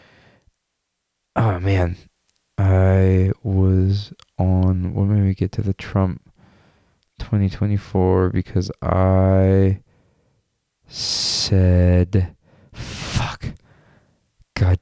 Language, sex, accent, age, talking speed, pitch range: English, male, American, 20-39, 75 wpm, 95-115 Hz